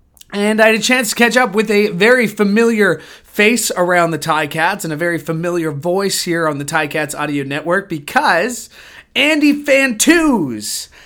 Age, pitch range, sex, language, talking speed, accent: 30-49, 155-210 Hz, male, English, 175 wpm, American